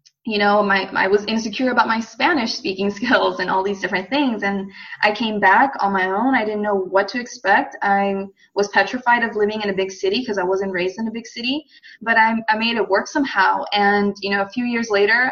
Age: 20-39